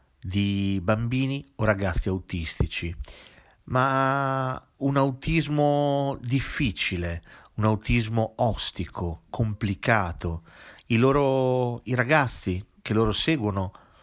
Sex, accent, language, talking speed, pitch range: male, native, Italian, 80 wpm, 95-135 Hz